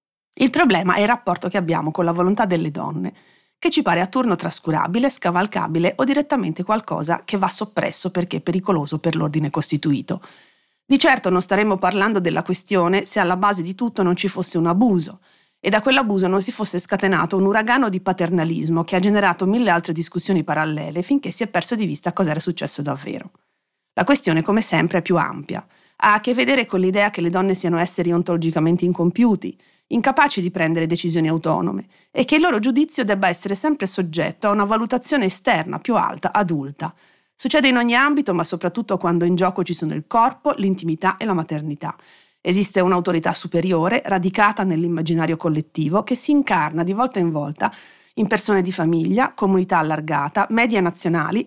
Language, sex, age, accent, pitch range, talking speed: Italian, female, 30-49, native, 170-215 Hz, 180 wpm